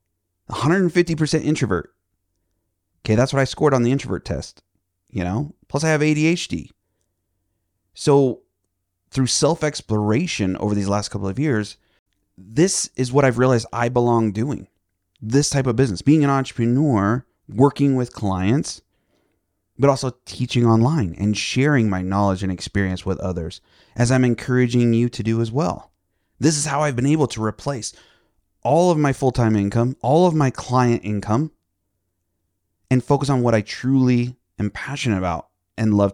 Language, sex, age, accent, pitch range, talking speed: English, male, 30-49, American, 100-135 Hz, 155 wpm